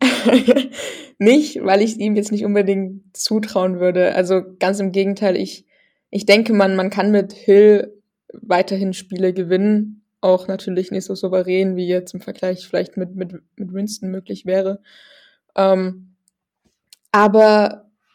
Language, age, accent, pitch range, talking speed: German, 20-39, German, 185-210 Hz, 140 wpm